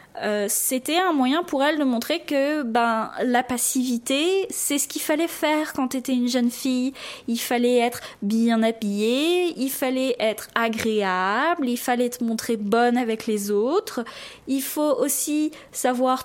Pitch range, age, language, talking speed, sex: 230-290 Hz, 20-39, French, 160 wpm, female